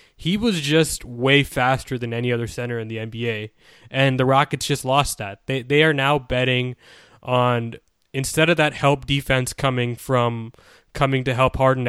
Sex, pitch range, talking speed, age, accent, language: male, 120-140 Hz, 175 wpm, 20-39, American, English